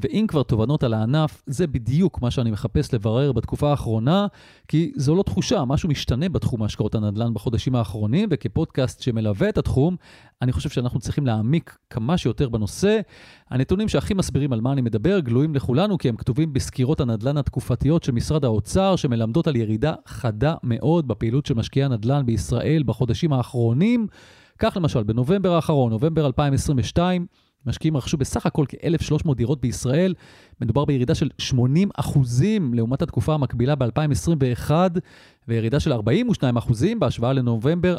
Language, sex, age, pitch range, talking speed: Hebrew, male, 30-49, 120-160 Hz, 140 wpm